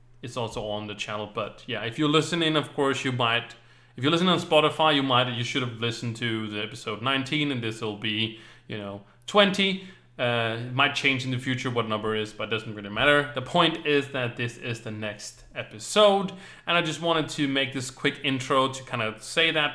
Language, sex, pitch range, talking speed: English, male, 120-145 Hz, 230 wpm